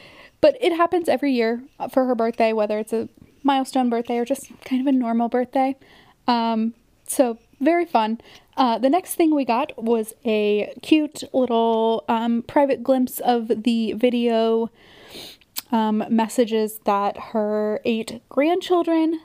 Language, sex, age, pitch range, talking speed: English, female, 10-29, 220-265 Hz, 145 wpm